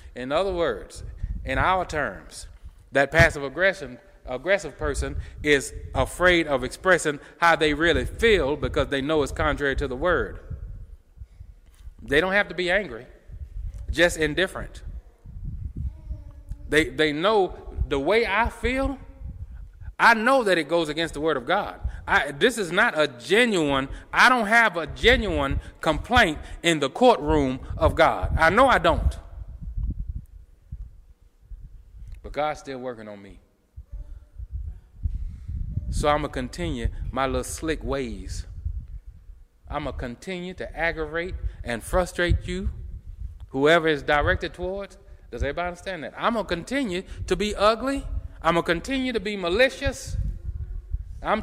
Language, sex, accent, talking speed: English, male, American, 140 wpm